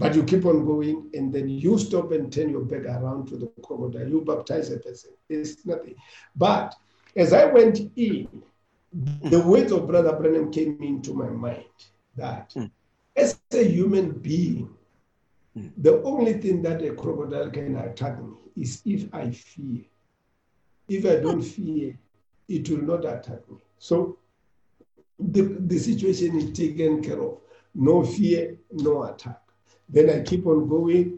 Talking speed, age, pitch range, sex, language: 155 wpm, 50-69, 155-210 Hz, male, English